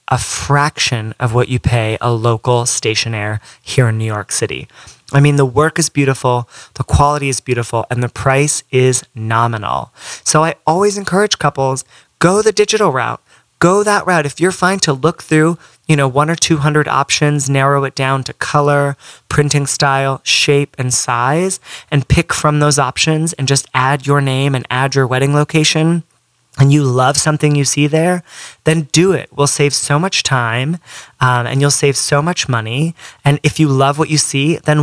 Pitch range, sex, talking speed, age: 130-155 Hz, male, 185 wpm, 30-49